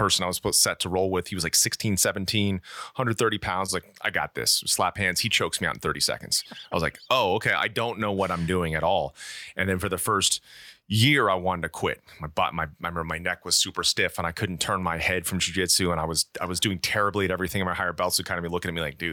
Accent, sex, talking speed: American, male, 285 wpm